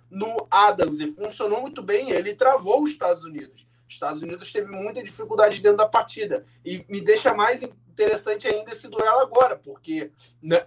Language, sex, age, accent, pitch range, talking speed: Portuguese, male, 20-39, Brazilian, 165-250 Hz, 175 wpm